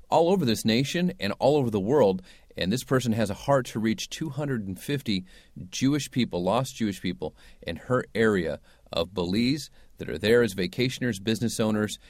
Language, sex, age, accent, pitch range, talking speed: English, male, 40-59, American, 105-145 Hz, 175 wpm